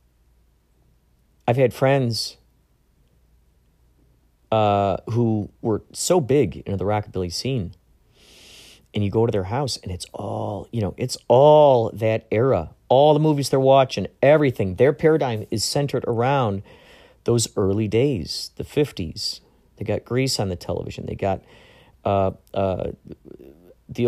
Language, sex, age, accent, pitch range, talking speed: English, male, 40-59, American, 80-130 Hz, 135 wpm